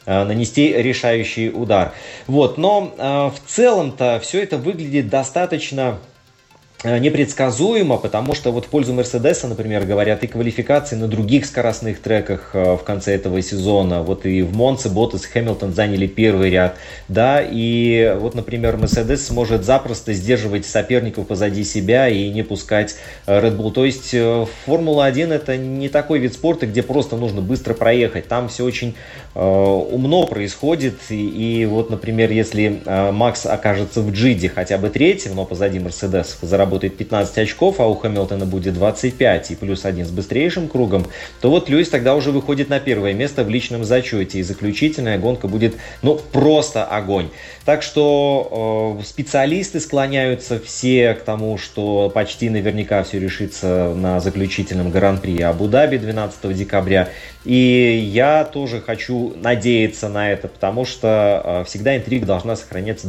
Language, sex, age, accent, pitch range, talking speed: Russian, male, 30-49, native, 100-130 Hz, 145 wpm